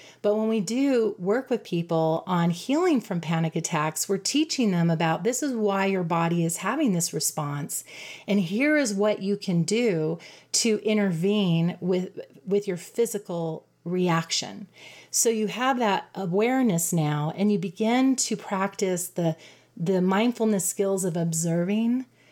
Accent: American